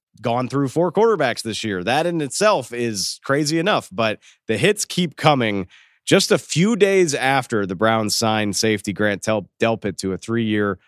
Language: English